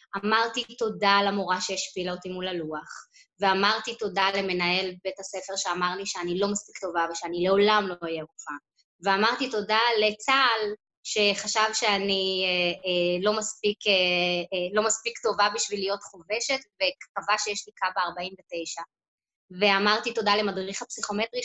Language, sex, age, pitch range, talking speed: Hebrew, female, 20-39, 185-220 Hz, 135 wpm